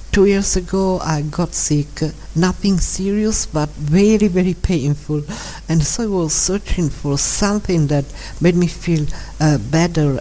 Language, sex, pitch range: English, female, 140-170 Hz